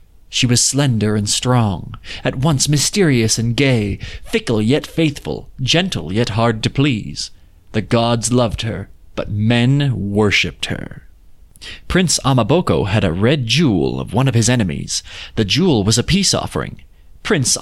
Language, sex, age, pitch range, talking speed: English, male, 30-49, 105-140 Hz, 150 wpm